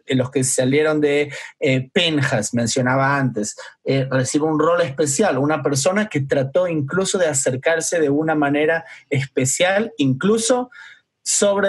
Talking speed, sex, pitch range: 140 wpm, male, 130-155 Hz